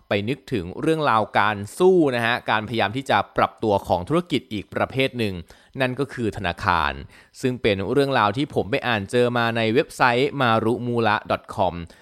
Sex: male